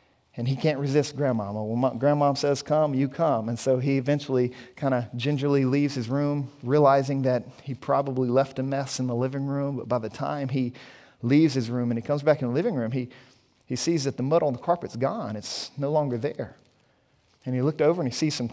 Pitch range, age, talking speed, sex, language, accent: 125-140 Hz, 40-59, 230 wpm, male, English, American